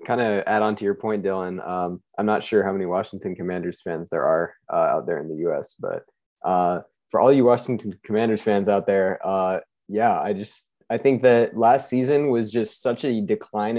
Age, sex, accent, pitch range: 20-39, male, American, 105-120 Hz